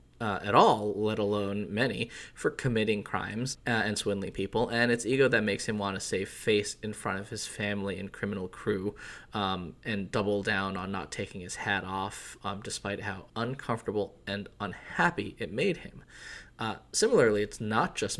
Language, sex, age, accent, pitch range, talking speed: English, male, 20-39, American, 100-115 Hz, 180 wpm